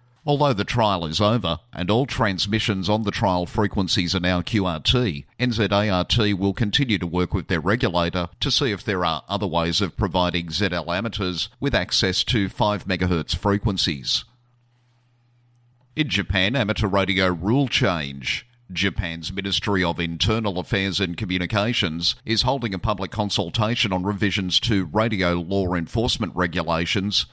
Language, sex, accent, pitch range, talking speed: English, male, Australian, 90-115 Hz, 145 wpm